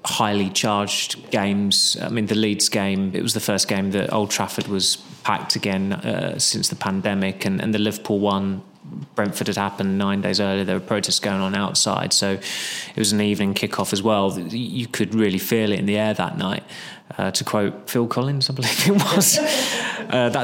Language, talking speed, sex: English, 195 wpm, male